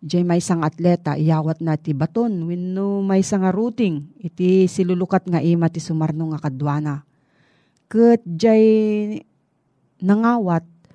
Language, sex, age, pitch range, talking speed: Filipino, female, 40-59, 160-210 Hz, 125 wpm